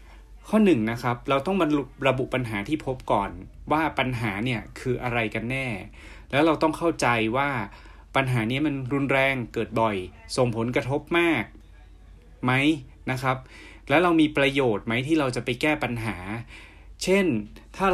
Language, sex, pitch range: Thai, male, 110-140 Hz